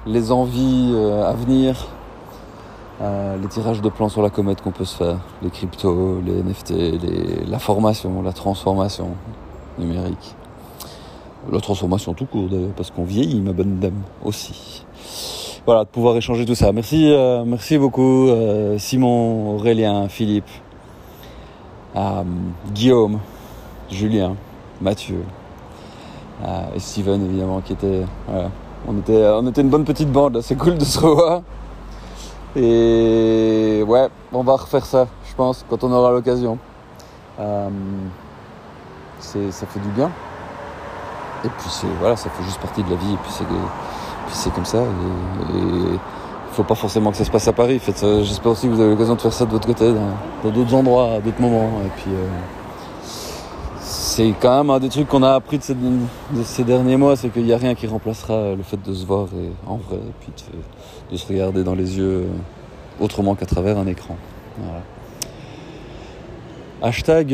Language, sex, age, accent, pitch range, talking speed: French, male, 40-59, French, 95-120 Hz, 175 wpm